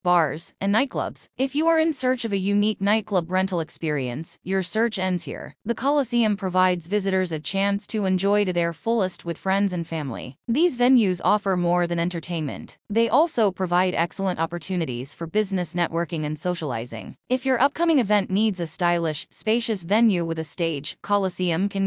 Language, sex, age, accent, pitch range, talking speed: English, female, 30-49, American, 170-230 Hz, 175 wpm